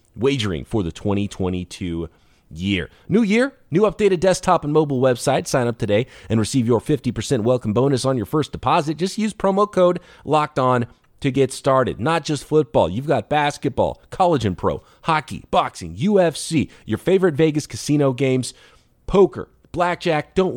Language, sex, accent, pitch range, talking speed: English, male, American, 105-165 Hz, 160 wpm